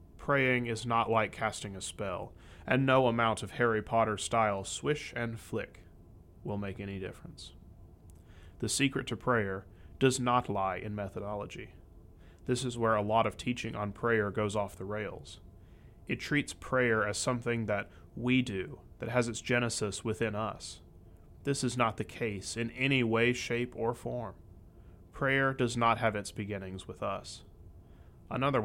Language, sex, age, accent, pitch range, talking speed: English, male, 30-49, American, 95-125 Hz, 160 wpm